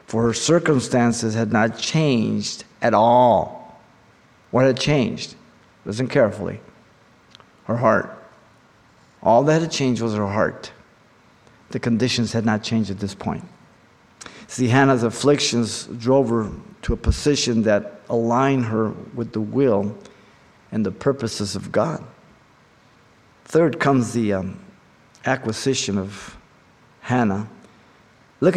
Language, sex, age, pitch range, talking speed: English, male, 50-69, 110-140 Hz, 120 wpm